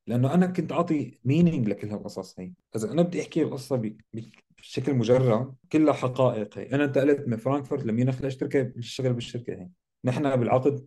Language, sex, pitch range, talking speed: Arabic, male, 125-160 Hz, 165 wpm